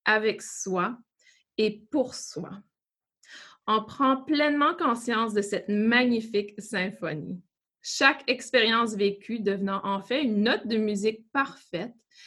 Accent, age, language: Canadian, 20-39, French